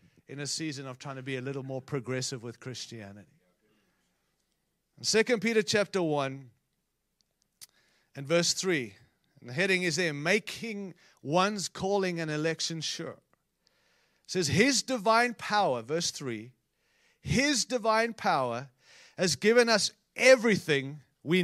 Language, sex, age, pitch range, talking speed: English, male, 40-59, 150-235 Hz, 130 wpm